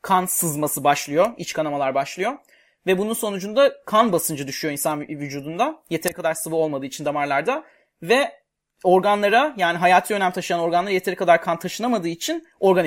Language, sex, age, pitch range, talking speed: Turkish, male, 30-49, 155-215 Hz, 155 wpm